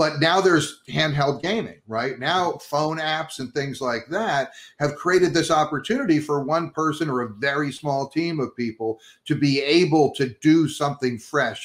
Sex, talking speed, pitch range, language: male, 175 wpm, 125-155 Hz, English